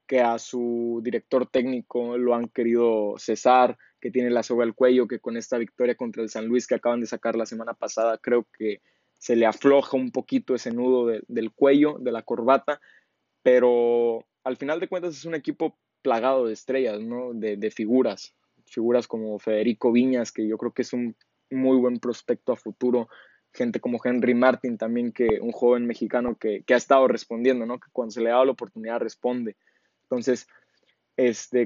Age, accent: 20-39, Mexican